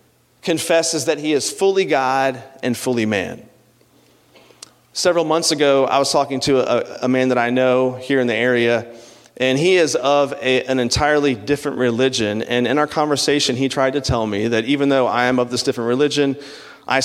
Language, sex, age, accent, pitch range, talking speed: English, male, 40-59, American, 130-165 Hz, 190 wpm